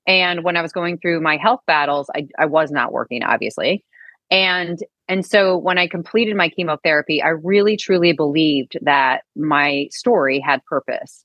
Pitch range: 155-185 Hz